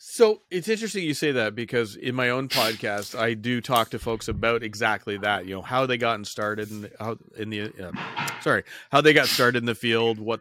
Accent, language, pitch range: American, English, 110-150 Hz